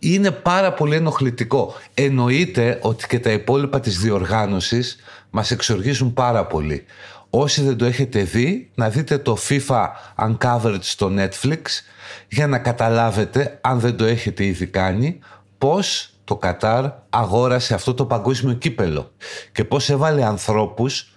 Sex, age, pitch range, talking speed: male, 50-69, 105-135 Hz, 135 wpm